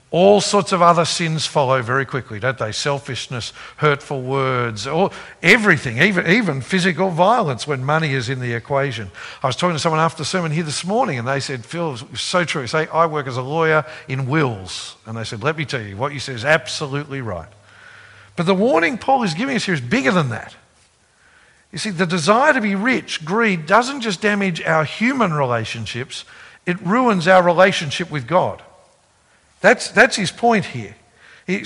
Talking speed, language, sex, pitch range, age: 195 wpm, English, male, 135-200 Hz, 50-69